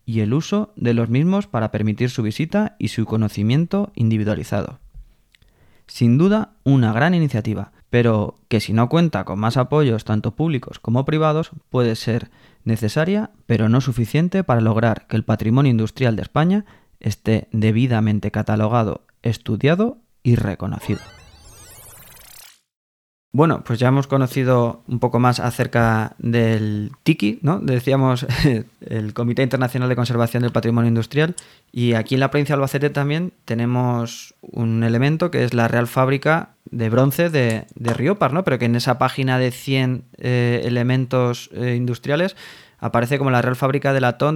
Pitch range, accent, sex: 115-140 Hz, Spanish, male